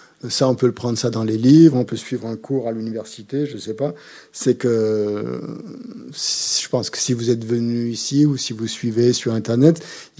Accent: French